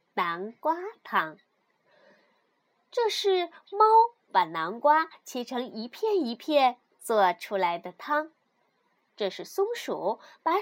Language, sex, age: Chinese, female, 20-39